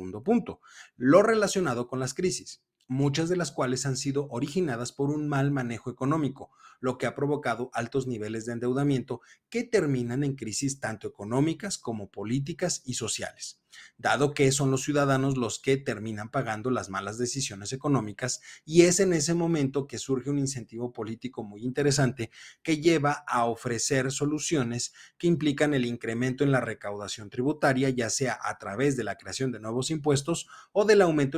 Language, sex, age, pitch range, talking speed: Spanish, male, 30-49, 120-155 Hz, 170 wpm